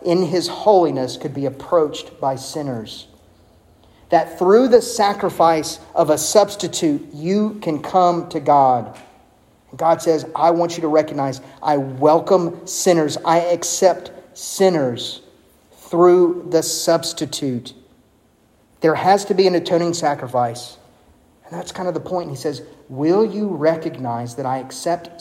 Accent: American